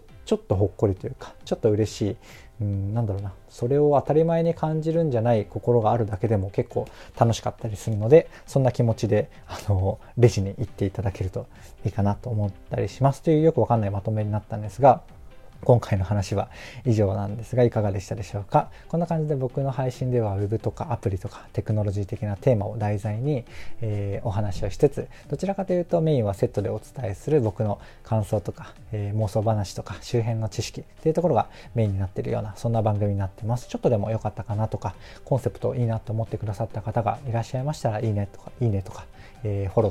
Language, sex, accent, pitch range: Japanese, male, native, 105-120 Hz